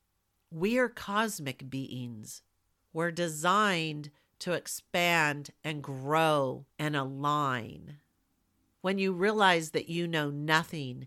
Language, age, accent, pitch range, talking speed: English, 50-69, American, 135-165 Hz, 105 wpm